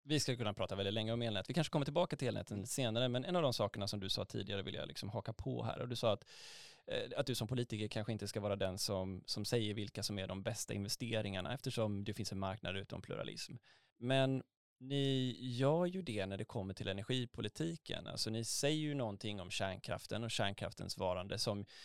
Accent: native